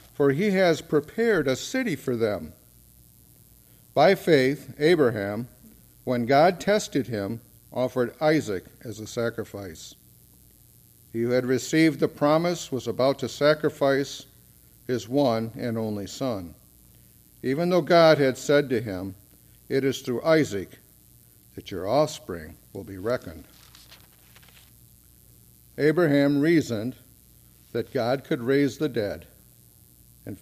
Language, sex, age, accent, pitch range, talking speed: English, male, 50-69, American, 105-140 Hz, 120 wpm